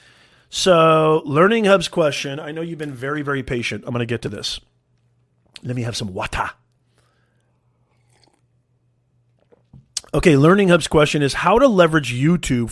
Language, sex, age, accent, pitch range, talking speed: English, male, 40-59, American, 115-150 Hz, 145 wpm